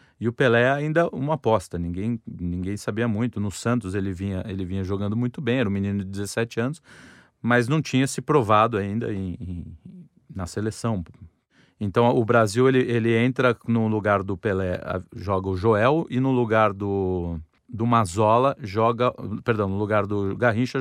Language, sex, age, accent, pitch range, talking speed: Portuguese, male, 40-59, Brazilian, 100-125 Hz, 175 wpm